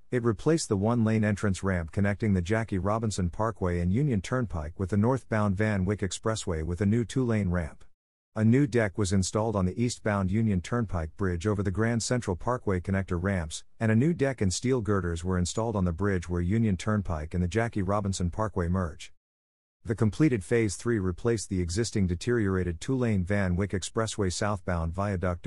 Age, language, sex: 50-69, English, male